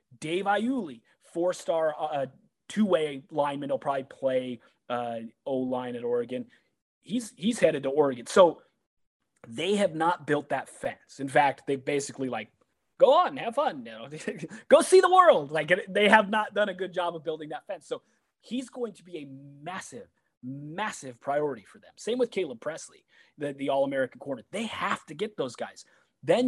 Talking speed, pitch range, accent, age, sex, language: 175 wpm, 150-235 Hz, American, 30-49, male, English